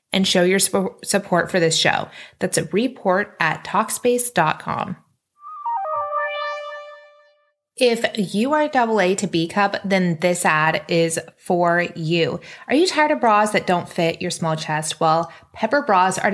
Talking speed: 150 wpm